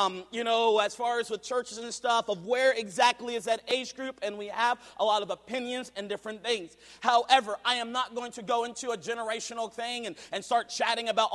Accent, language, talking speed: American, English, 230 wpm